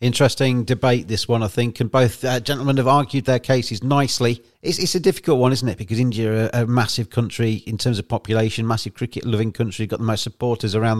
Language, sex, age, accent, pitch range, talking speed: English, male, 40-59, British, 110-140 Hz, 215 wpm